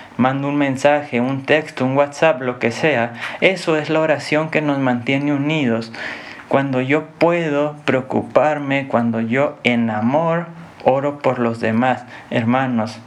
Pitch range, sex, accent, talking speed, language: 120-145 Hz, male, Mexican, 140 wpm, Spanish